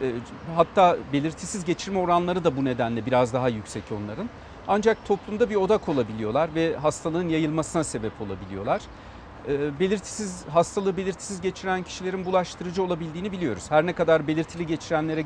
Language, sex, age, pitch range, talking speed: Turkish, male, 40-59, 135-195 Hz, 135 wpm